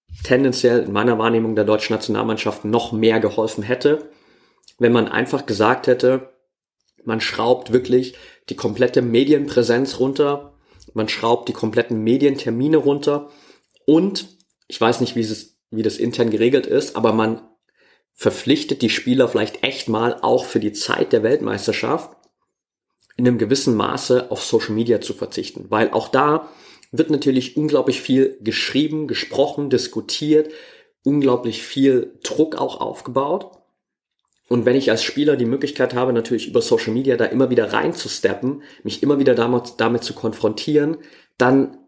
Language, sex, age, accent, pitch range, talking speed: German, male, 30-49, German, 115-140 Hz, 145 wpm